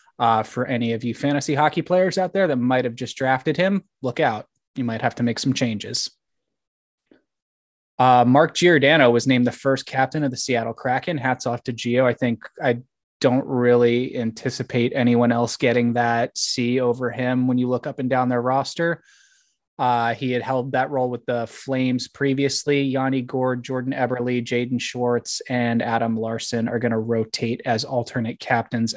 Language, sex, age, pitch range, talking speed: English, male, 20-39, 120-135 Hz, 180 wpm